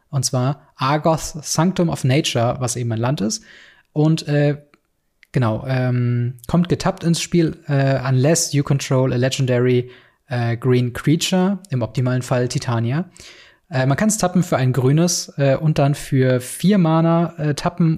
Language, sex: German, male